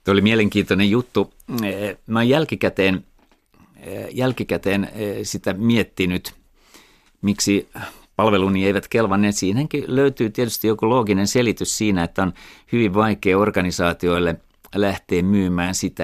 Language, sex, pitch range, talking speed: Finnish, male, 90-110 Hz, 105 wpm